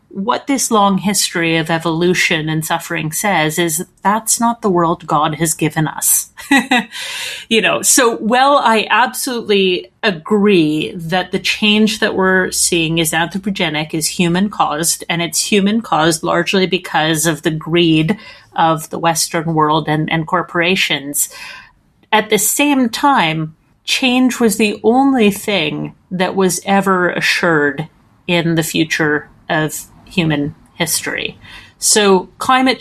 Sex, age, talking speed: female, 30-49, 135 wpm